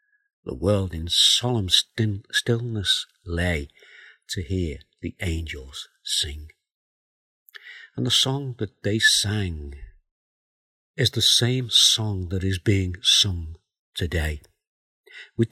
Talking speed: 105 wpm